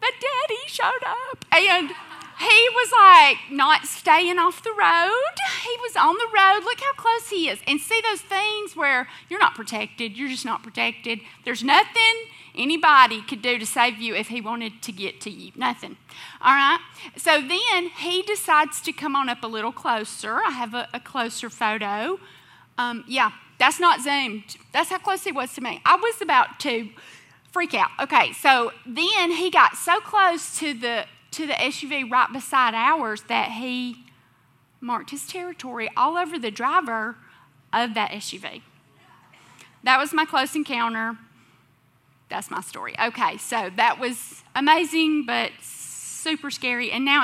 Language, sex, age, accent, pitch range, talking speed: English, female, 30-49, American, 230-360 Hz, 170 wpm